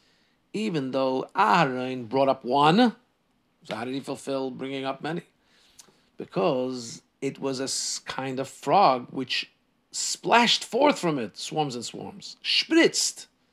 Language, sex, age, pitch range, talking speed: English, male, 50-69, 125-190 Hz, 135 wpm